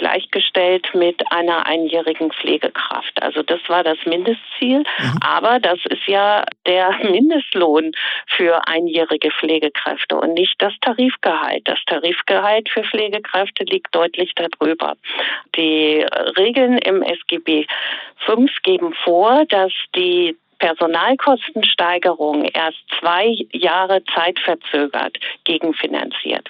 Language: German